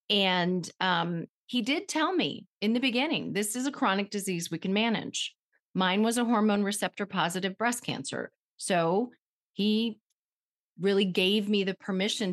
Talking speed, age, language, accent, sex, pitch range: 155 wpm, 30-49, English, American, female, 180-230 Hz